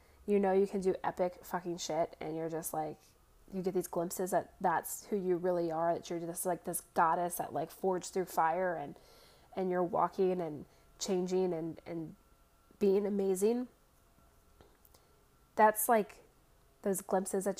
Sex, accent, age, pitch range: female, American, 20-39, 170-205 Hz